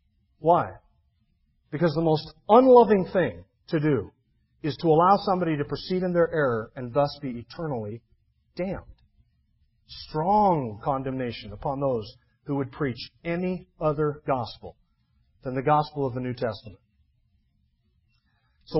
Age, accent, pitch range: 40-59, American, 140-195 Hz